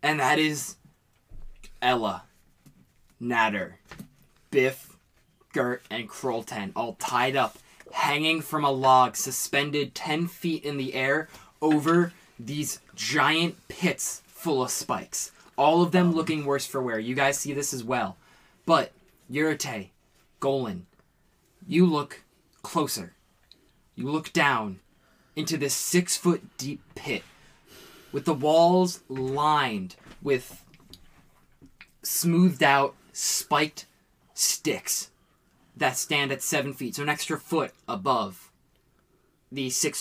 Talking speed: 115 wpm